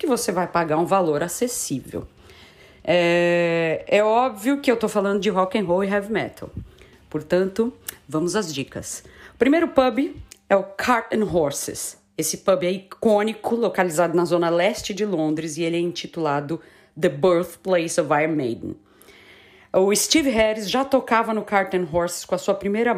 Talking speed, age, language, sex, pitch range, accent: 170 wpm, 40-59, Portuguese, female, 170-220 Hz, Brazilian